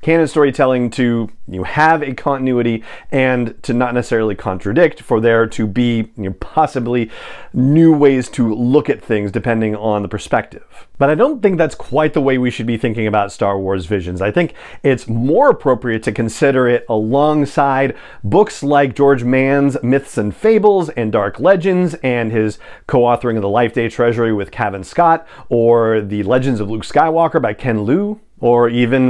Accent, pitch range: American, 110-145 Hz